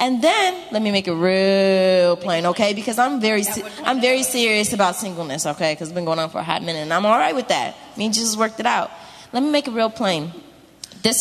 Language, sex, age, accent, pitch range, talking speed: English, female, 20-39, American, 180-250 Hz, 245 wpm